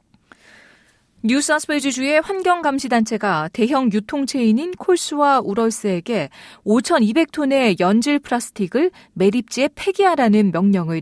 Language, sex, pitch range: Korean, female, 200-265 Hz